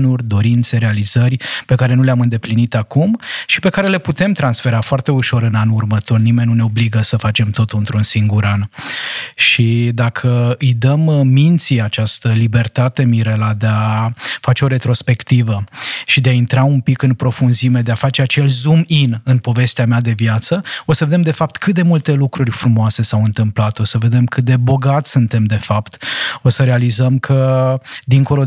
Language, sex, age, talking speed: Romanian, male, 20-39, 180 wpm